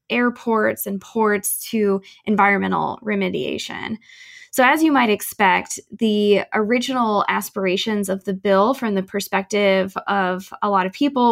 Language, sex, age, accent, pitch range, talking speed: English, female, 10-29, American, 190-215 Hz, 135 wpm